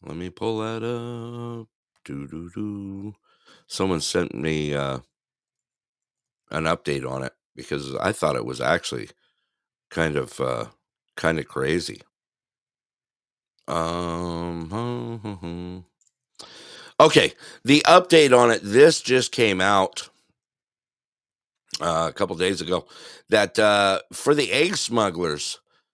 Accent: American